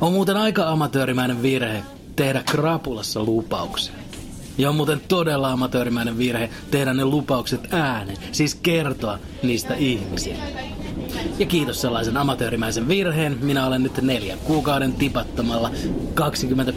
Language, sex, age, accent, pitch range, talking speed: Finnish, male, 30-49, native, 110-140 Hz, 120 wpm